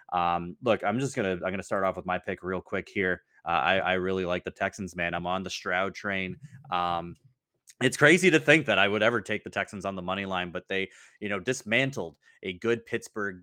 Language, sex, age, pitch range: English, male, 20-39, 90-105 Hz